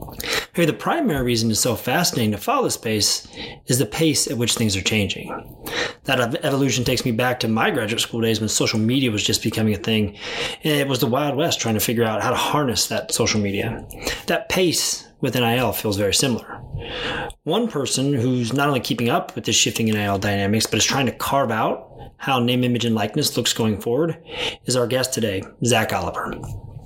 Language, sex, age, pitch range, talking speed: English, male, 30-49, 110-135 Hz, 205 wpm